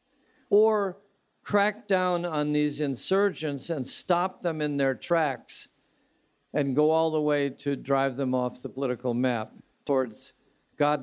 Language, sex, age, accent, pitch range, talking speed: English, male, 50-69, American, 140-175 Hz, 140 wpm